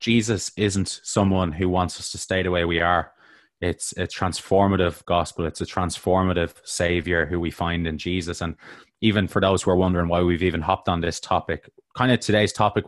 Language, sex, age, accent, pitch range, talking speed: English, male, 20-39, Irish, 90-100 Hz, 200 wpm